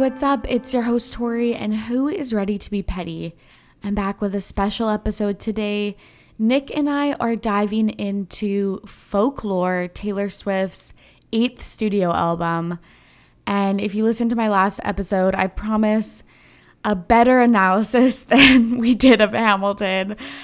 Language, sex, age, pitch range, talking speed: English, female, 20-39, 185-225 Hz, 145 wpm